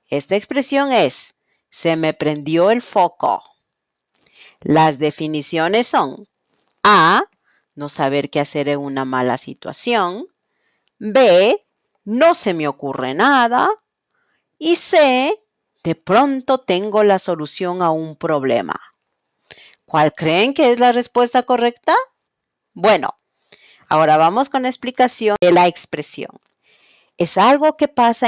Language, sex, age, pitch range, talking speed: Spanish, female, 40-59, 165-250 Hz, 120 wpm